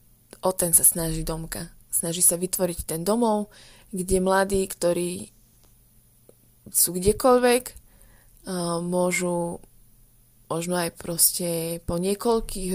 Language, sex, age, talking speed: Slovak, female, 20-39, 100 wpm